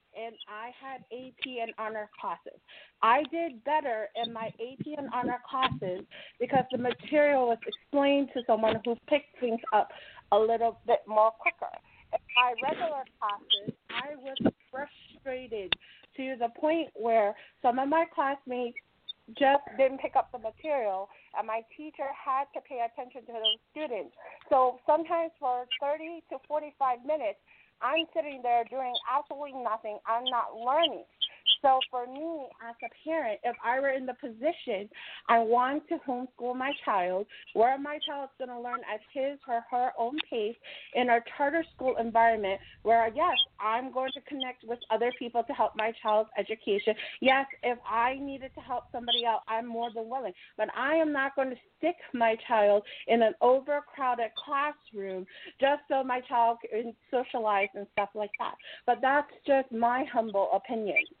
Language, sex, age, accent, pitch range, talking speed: English, female, 40-59, American, 230-285 Hz, 165 wpm